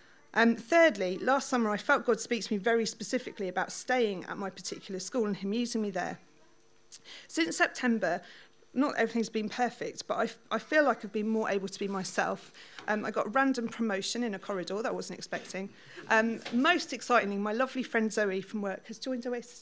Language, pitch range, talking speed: English, 200-255 Hz, 200 wpm